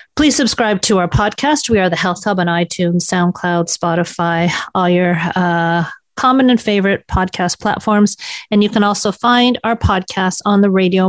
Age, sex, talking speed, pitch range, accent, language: 40-59, female, 175 wpm, 175-225 Hz, American, English